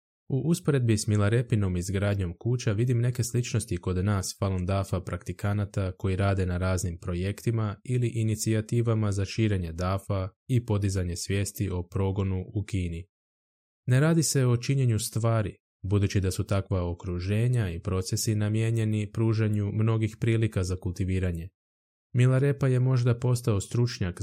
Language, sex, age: Croatian, male, 20-39